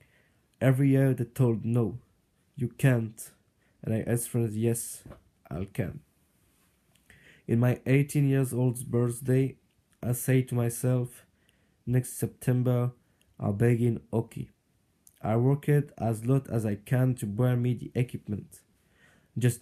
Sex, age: male, 20-39